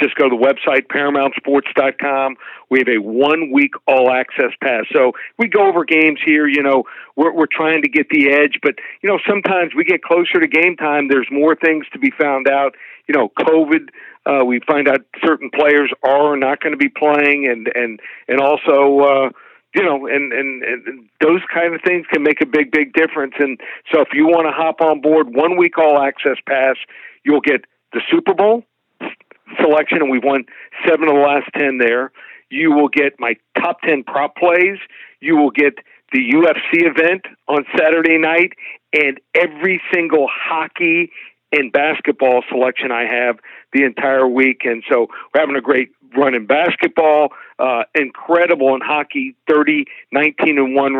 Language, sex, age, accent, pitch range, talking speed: English, male, 50-69, American, 135-165 Hz, 175 wpm